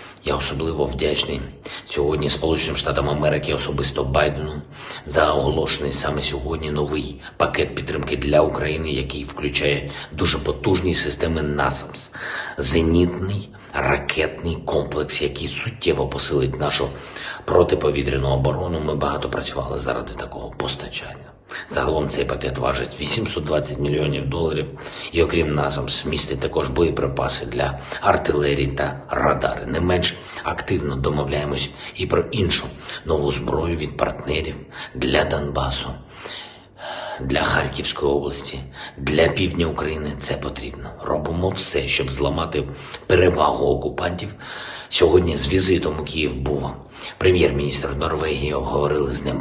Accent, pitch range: native, 70-80 Hz